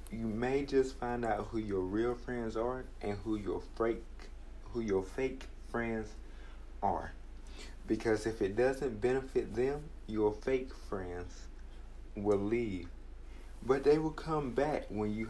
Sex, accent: male, American